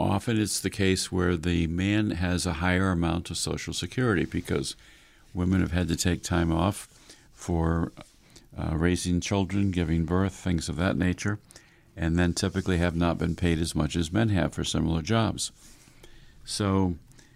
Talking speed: 165 wpm